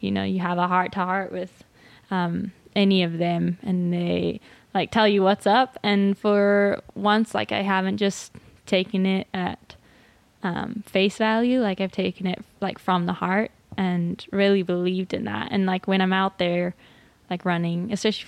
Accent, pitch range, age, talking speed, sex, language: American, 185-210 Hz, 10-29, 180 wpm, female, English